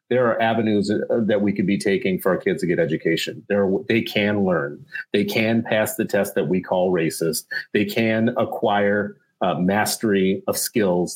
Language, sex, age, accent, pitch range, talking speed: English, male, 40-59, American, 100-120 Hz, 175 wpm